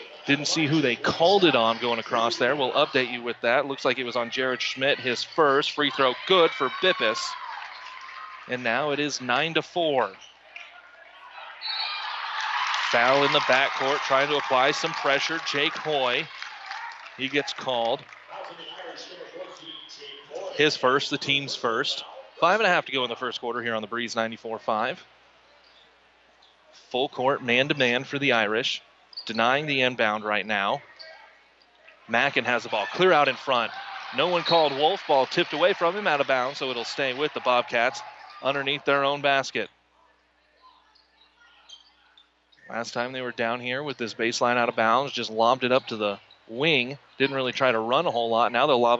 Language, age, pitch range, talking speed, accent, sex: English, 30-49, 120-155 Hz, 175 wpm, American, male